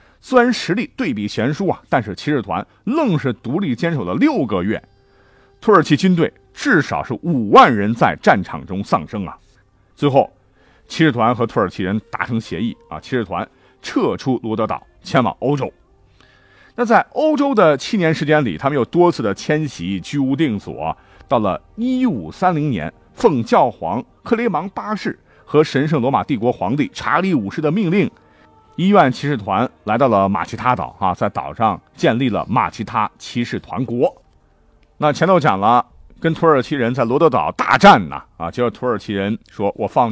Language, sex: Chinese, male